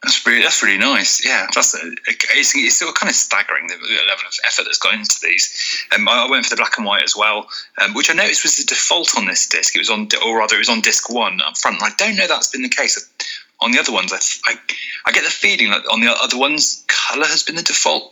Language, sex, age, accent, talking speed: English, male, 30-49, British, 270 wpm